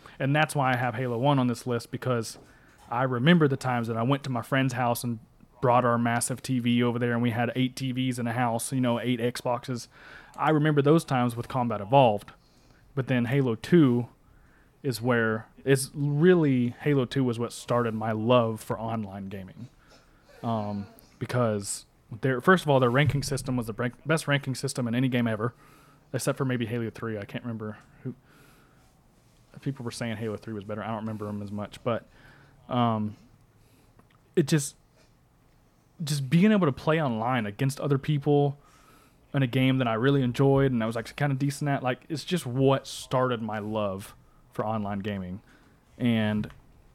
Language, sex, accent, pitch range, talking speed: English, male, American, 115-140 Hz, 185 wpm